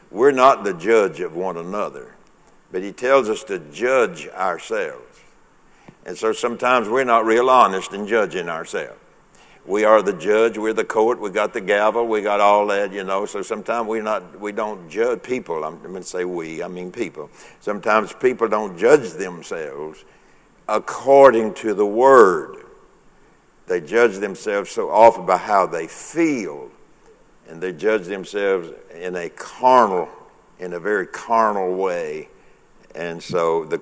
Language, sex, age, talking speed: English, male, 60-79, 160 wpm